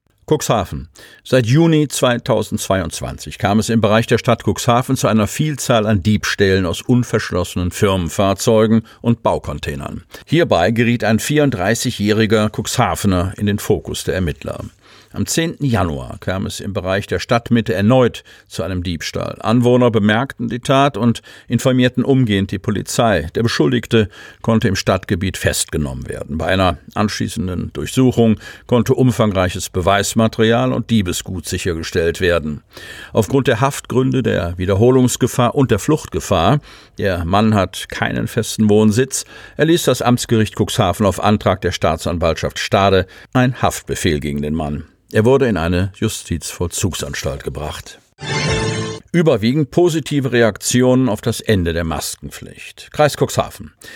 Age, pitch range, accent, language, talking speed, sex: 50-69, 95-125 Hz, German, German, 130 wpm, male